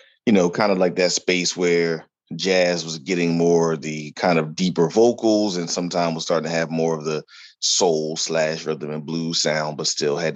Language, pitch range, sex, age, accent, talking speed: English, 80-95 Hz, male, 30-49, American, 210 wpm